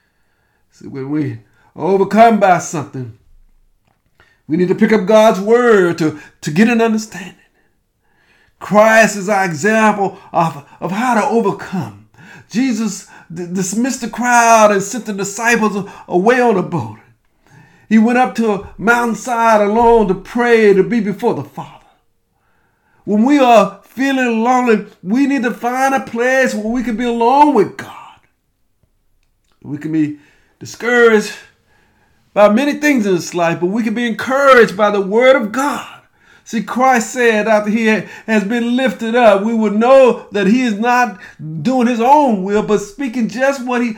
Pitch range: 185-245 Hz